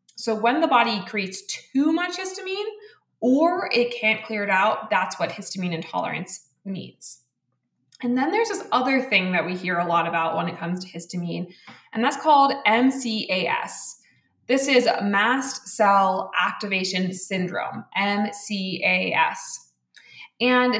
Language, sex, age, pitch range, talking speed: English, female, 20-39, 185-230 Hz, 140 wpm